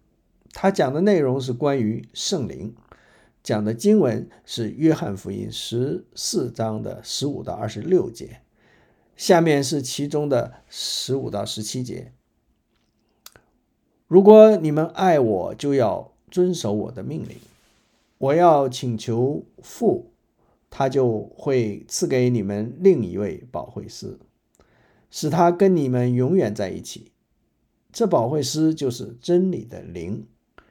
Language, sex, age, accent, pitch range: English, male, 50-69, Chinese, 120-165 Hz